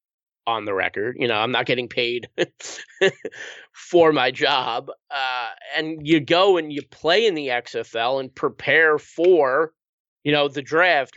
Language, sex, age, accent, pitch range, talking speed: English, male, 20-39, American, 130-160 Hz, 155 wpm